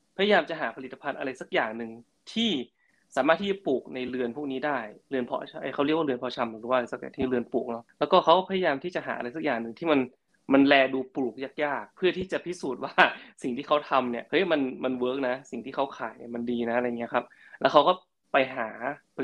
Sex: male